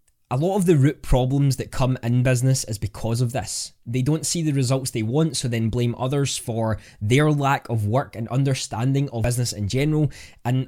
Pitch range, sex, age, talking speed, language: 110-140 Hz, male, 10-29, 210 wpm, English